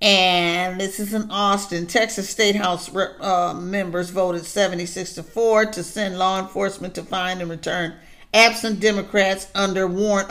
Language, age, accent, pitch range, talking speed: English, 50-69, American, 170-200 Hz, 150 wpm